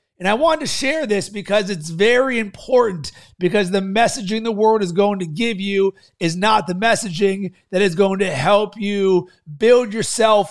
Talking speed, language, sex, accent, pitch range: 185 wpm, English, male, American, 190-230 Hz